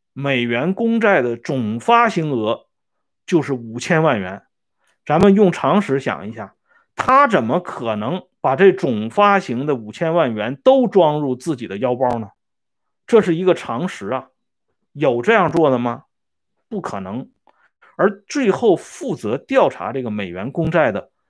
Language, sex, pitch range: Swedish, male, 130-205 Hz